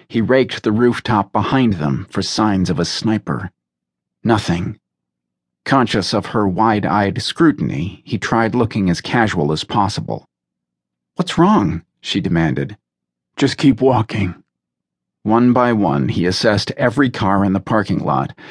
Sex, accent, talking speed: male, American, 135 wpm